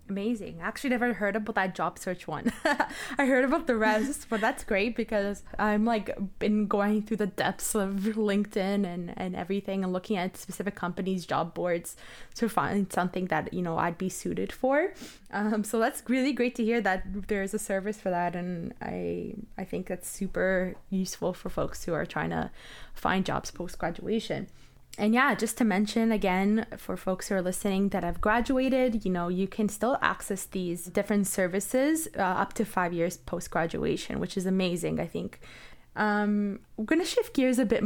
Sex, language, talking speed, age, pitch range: female, English, 195 wpm, 20-39, 185-225 Hz